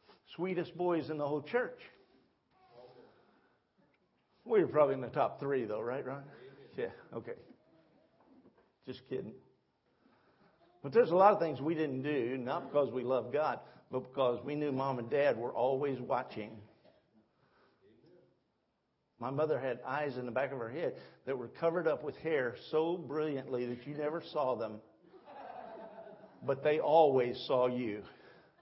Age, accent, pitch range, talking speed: 50-69, American, 145-230 Hz, 150 wpm